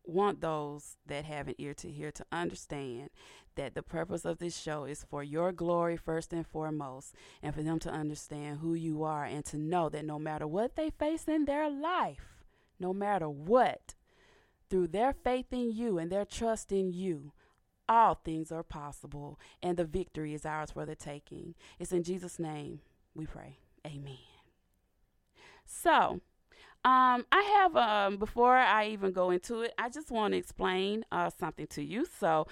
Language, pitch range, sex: English, 155-220 Hz, female